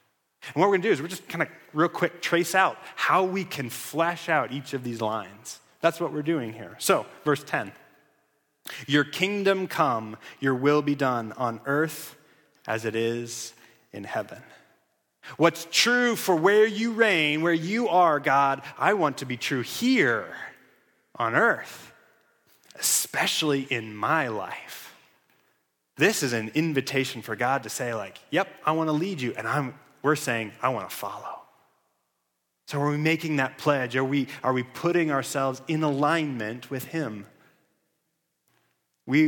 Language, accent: English, American